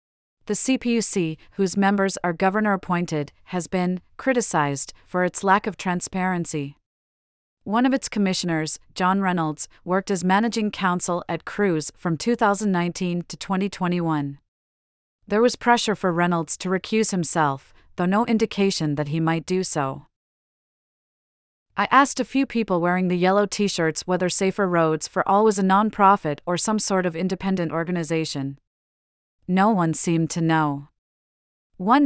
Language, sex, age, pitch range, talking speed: English, female, 30-49, 160-200 Hz, 140 wpm